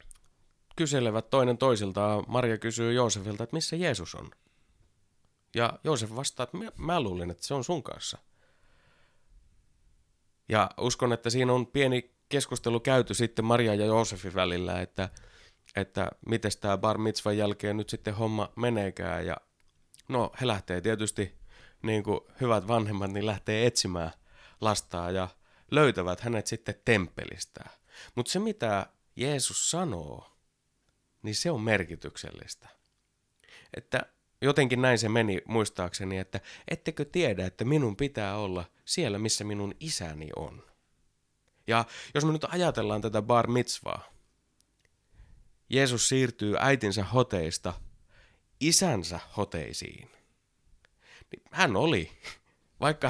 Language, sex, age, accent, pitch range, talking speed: Finnish, male, 30-49, native, 100-125 Hz, 120 wpm